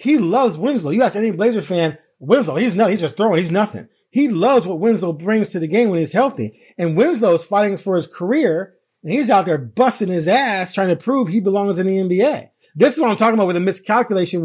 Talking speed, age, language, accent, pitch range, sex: 240 wpm, 30-49, English, American, 195-275 Hz, male